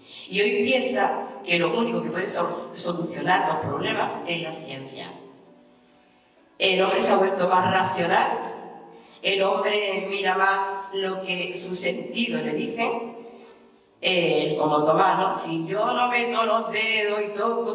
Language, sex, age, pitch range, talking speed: Spanish, female, 40-59, 165-225 Hz, 140 wpm